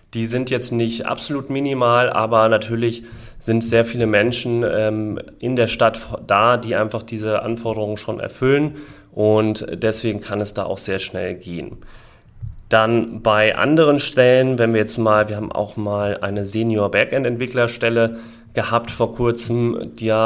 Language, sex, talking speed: German, male, 155 wpm